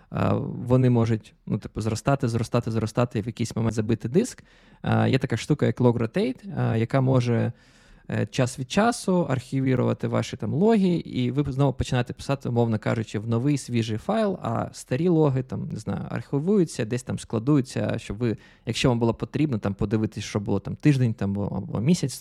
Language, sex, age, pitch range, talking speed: Ukrainian, male, 20-39, 115-155 Hz, 170 wpm